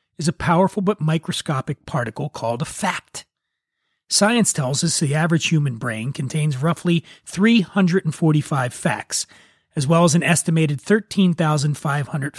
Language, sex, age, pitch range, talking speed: English, male, 30-49, 155-200 Hz, 125 wpm